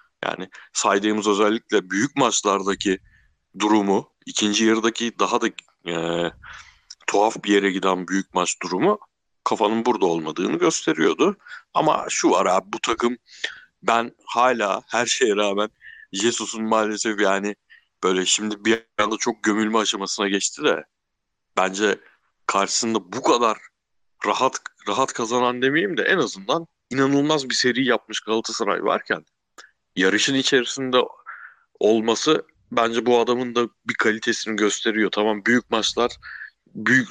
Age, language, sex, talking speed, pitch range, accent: 60-79, Turkish, male, 120 wpm, 100-120 Hz, native